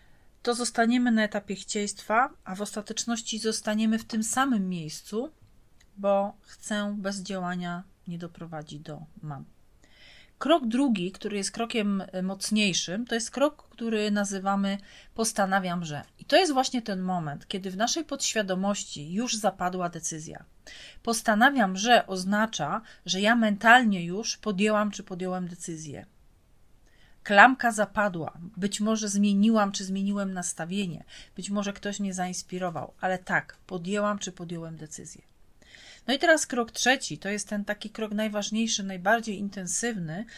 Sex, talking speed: female, 135 wpm